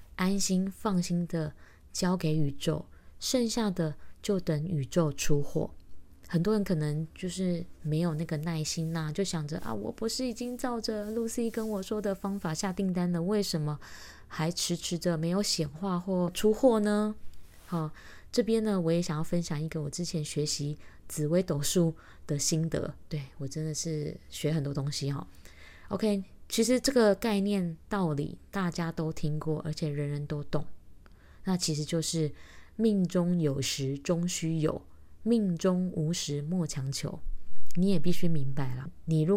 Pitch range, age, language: 150-190 Hz, 20-39, Chinese